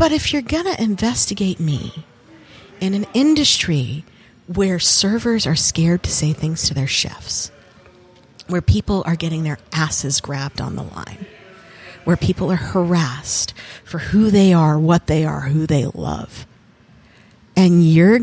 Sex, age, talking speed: female, 40-59, 150 wpm